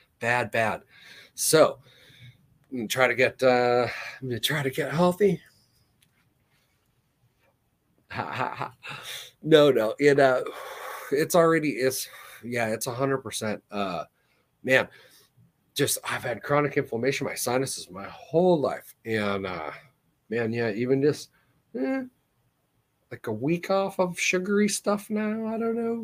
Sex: male